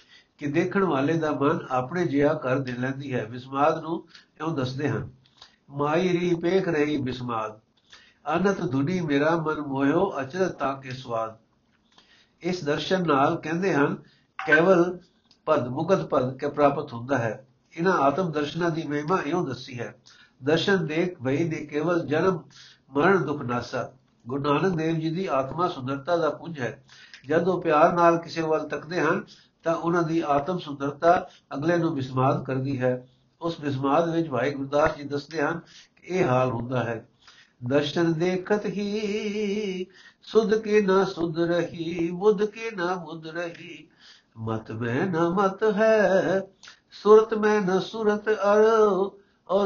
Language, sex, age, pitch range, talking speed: Punjabi, male, 60-79, 140-180 Hz, 140 wpm